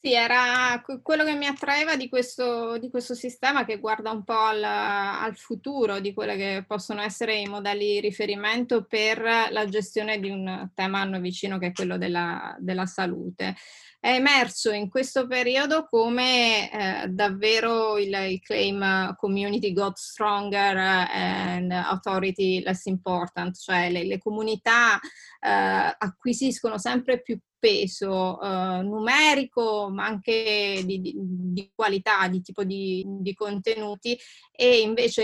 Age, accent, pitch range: 20-39, native, 195-230 Hz